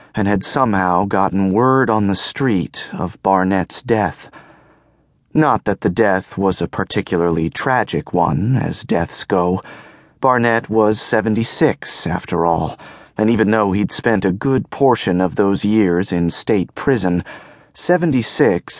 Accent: American